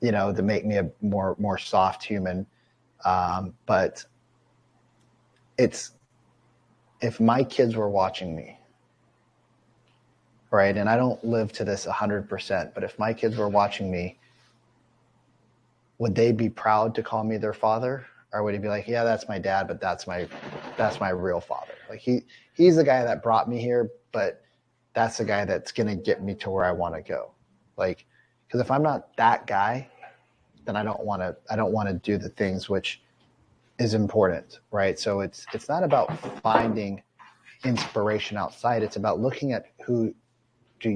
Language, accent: English, American